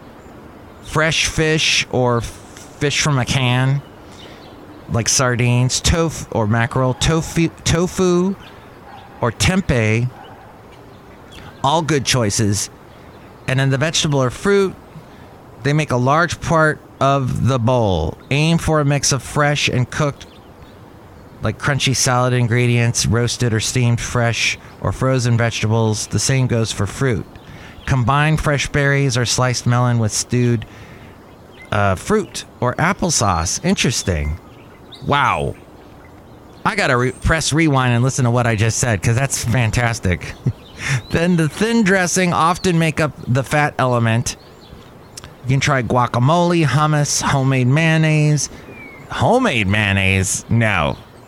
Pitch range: 110-145 Hz